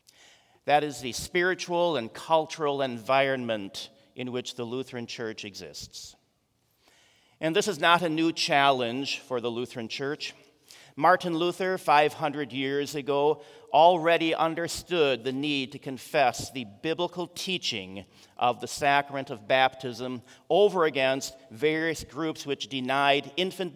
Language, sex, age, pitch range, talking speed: English, male, 40-59, 125-165 Hz, 125 wpm